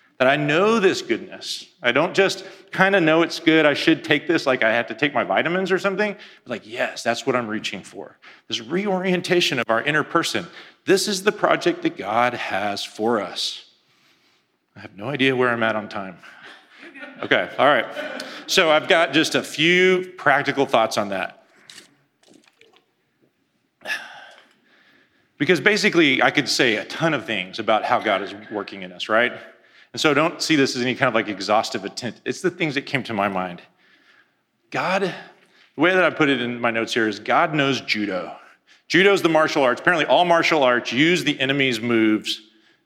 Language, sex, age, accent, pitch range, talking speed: English, male, 40-59, American, 115-170 Hz, 190 wpm